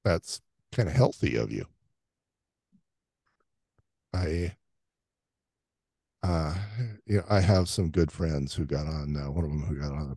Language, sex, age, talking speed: English, male, 50-69, 155 wpm